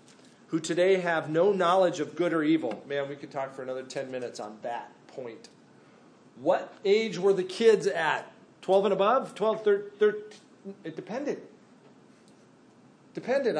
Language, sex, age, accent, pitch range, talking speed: English, male, 40-59, American, 155-200 Hz, 150 wpm